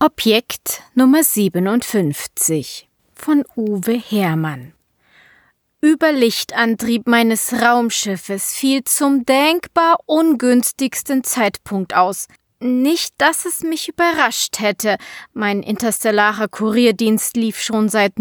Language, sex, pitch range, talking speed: German, female, 200-265 Hz, 90 wpm